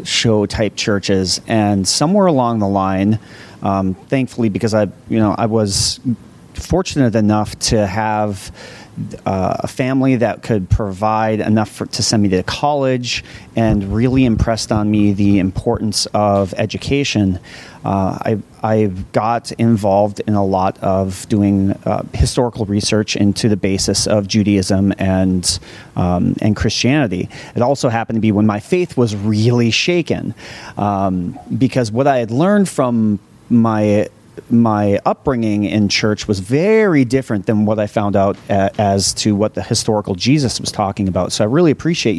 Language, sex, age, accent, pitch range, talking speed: English, male, 30-49, American, 100-125 Hz, 155 wpm